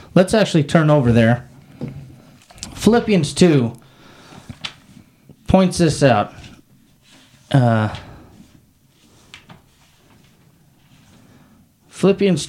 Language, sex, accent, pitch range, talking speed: English, male, American, 140-185 Hz, 60 wpm